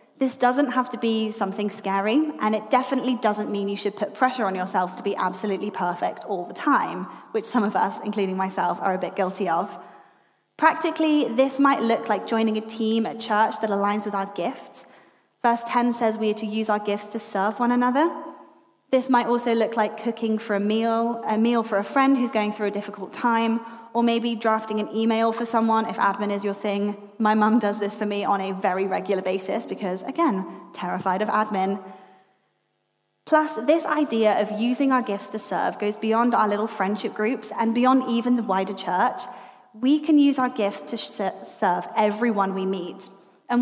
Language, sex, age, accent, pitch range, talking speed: English, female, 10-29, British, 205-245 Hz, 200 wpm